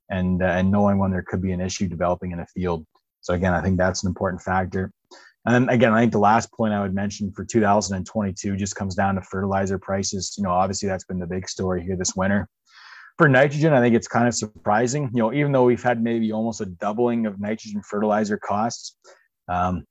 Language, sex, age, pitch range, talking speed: English, male, 20-39, 95-115 Hz, 225 wpm